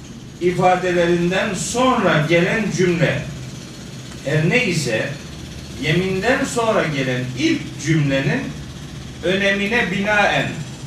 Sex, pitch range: male, 150-195 Hz